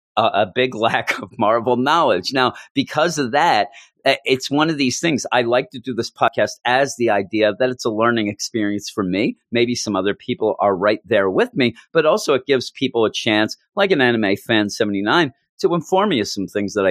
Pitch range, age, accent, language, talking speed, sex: 105-130 Hz, 40-59, American, English, 215 wpm, male